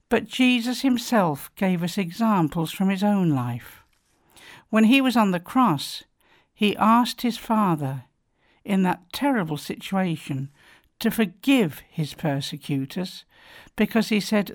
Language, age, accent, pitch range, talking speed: English, 60-79, British, 155-220 Hz, 130 wpm